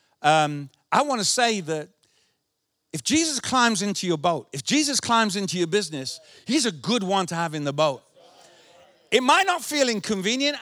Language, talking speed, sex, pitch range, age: English, 180 wpm, male, 170-255 Hz, 50-69